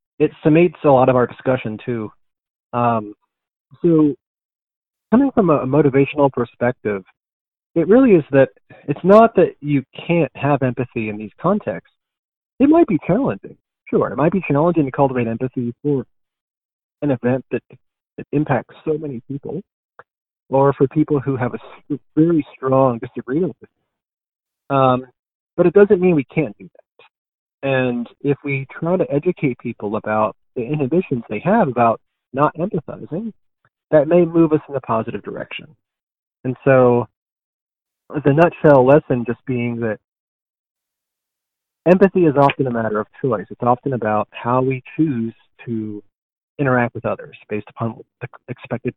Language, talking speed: English, 150 wpm